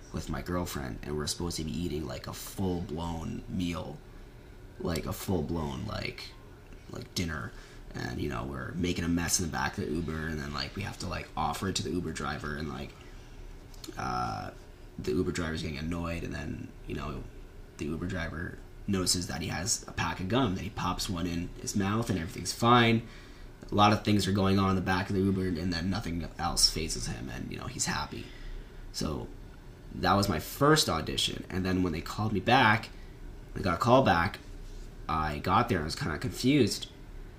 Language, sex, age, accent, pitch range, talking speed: English, male, 20-39, American, 85-105 Hz, 205 wpm